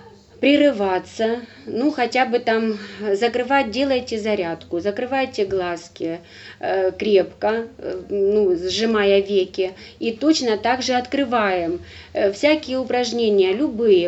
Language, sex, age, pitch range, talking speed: Ukrainian, female, 30-49, 195-265 Hz, 95 wpm